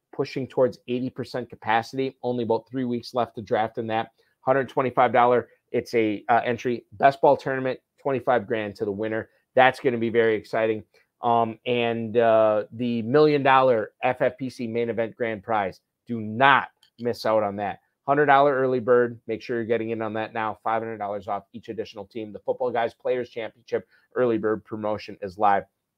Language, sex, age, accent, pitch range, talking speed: English, male, 30-49, American, 110-130 Hz, 175 wpm